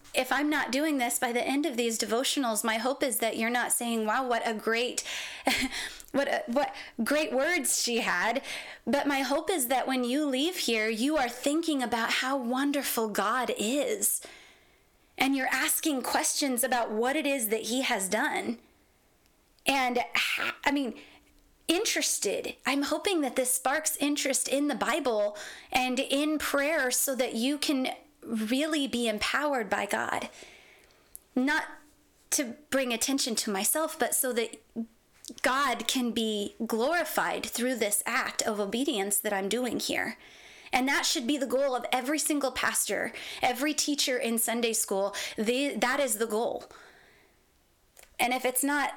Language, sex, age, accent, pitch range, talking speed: English, female, 20-39, American, 230-285 Hz, 155 wpm